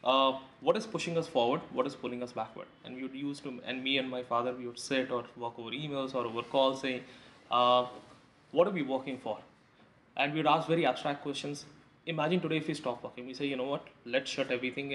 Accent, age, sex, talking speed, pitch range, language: Indian, 20-39, male, 235 wpm, 125-150 Hz, English